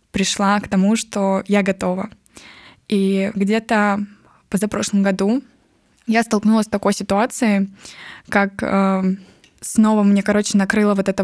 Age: 20-39